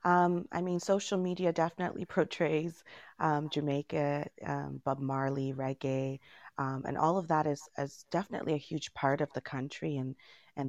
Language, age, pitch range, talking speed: English, 30-49, 135-155 Hz, 165 wpm